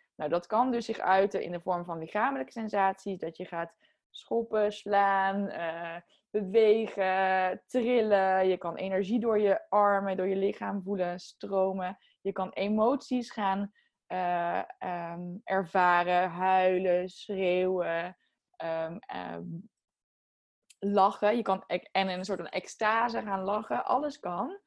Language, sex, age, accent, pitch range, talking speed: Dutch, female, 20-39, Dutch, 180-210 Hz, 135 wpm